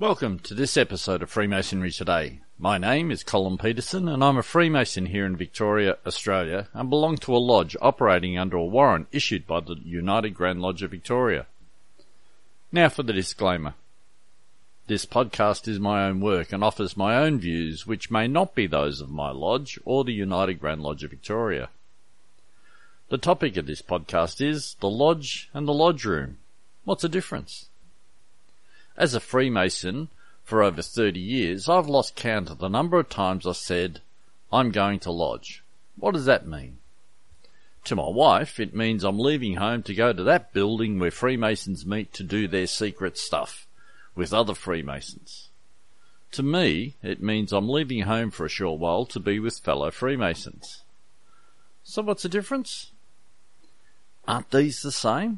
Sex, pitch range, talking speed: male, 90-130 Hz, 170 wpm